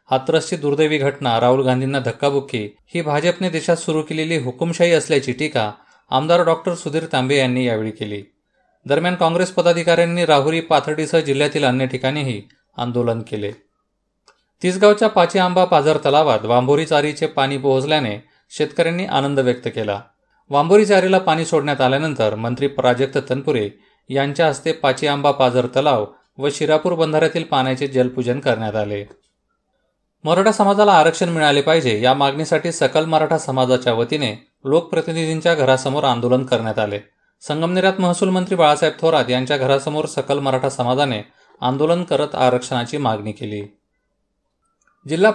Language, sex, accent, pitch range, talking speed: Marathi, male, native, 125-165 Hz, 125 wpm